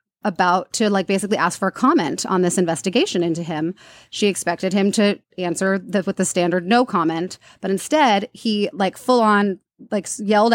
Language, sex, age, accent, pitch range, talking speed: English, female, 30-49, American, 180-220 Hz, 170 wpm